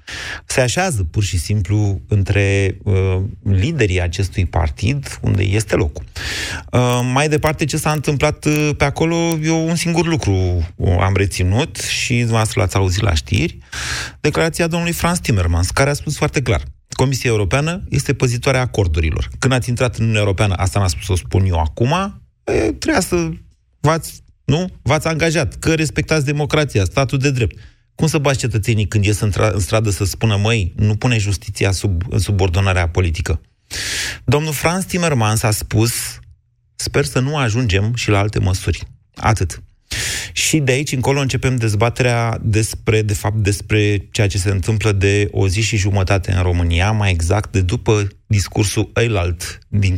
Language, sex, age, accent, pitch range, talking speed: Romanian, male, 30-49, native, 95-140 Hz, 165 wpm